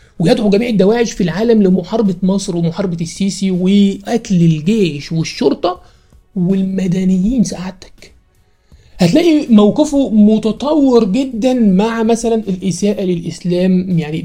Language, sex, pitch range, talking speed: Arabic, male, 180-220 Hz, 95 wpm